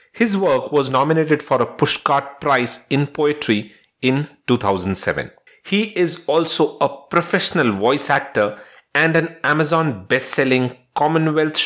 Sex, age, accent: male, 40-59, Indian